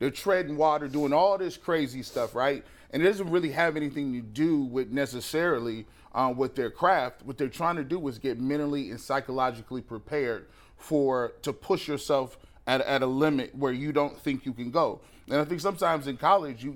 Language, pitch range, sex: English, 130-160 Hz, male